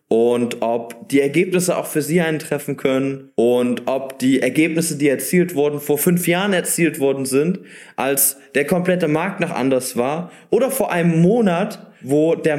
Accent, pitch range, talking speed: German, 125-170 Hz, 165 wpm